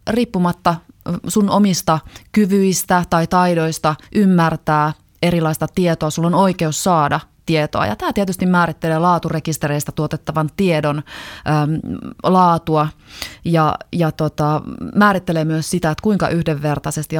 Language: Finnish